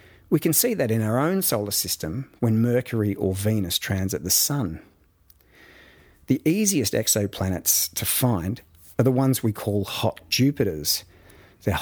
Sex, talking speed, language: male, 145 wpm, English